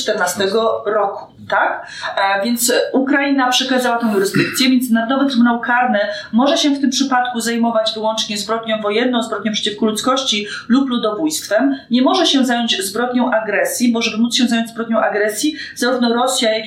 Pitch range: 210-265 Hz